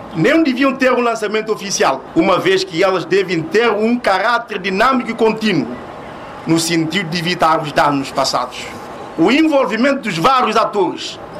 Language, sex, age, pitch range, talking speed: Portuguese, male, 50-69, 165-235 Hz, 155 wpm